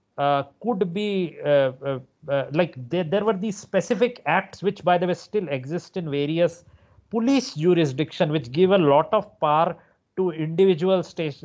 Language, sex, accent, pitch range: English, male, Indian, 145-195 Hz